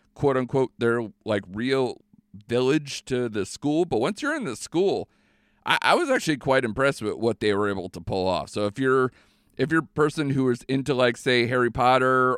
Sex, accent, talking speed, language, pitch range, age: male, American, 210 wpm, English, 110-140 Hz, 40-59